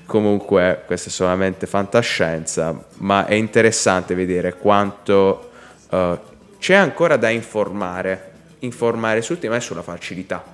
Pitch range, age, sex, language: 95-120 Hz, 20-39, male, Italian